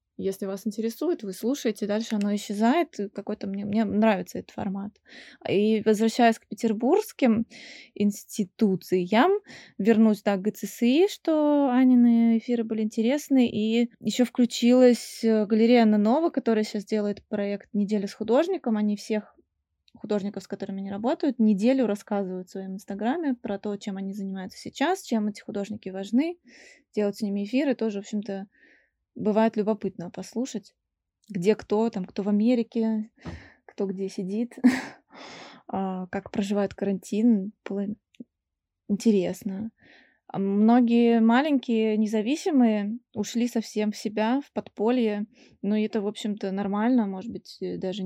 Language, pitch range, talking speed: Russian, 200-235 Hz, 130 wpm